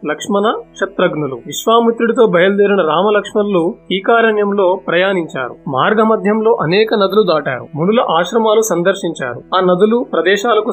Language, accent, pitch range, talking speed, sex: Telugu, native, 175-220 Hz, 110 wpm, male